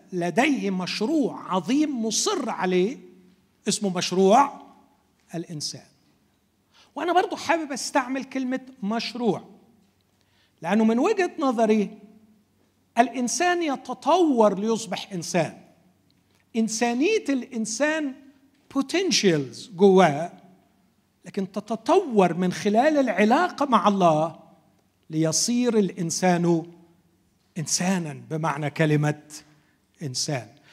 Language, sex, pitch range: Arabic, male, 175-260 Hz